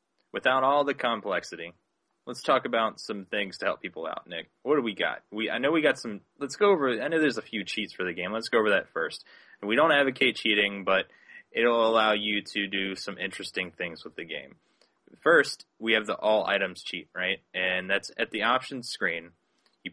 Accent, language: American, English